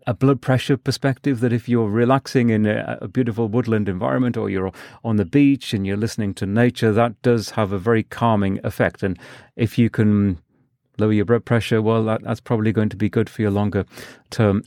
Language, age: English, 40-59